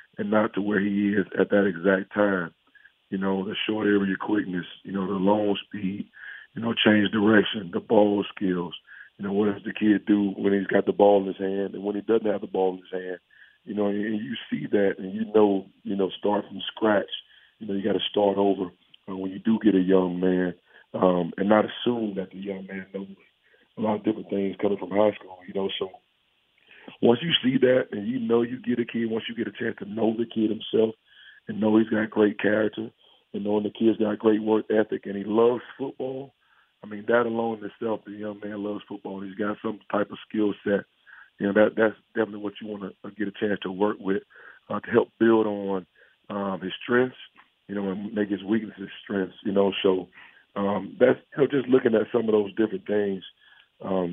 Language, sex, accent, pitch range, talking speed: English, male, American, 95-110 Hz, 230 wpm